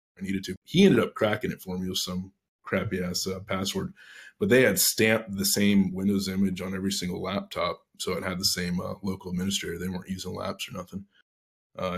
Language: English